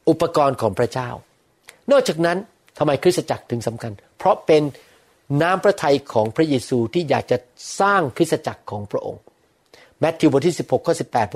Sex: male